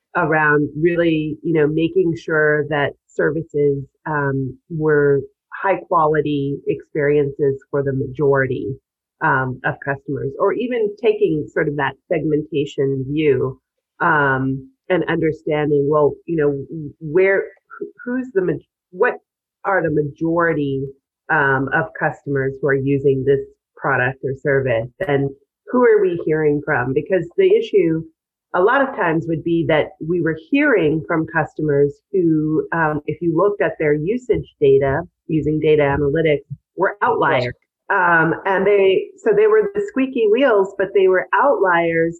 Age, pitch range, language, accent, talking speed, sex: 30-49, 145-190 Hz, English, American, 140 wpm, female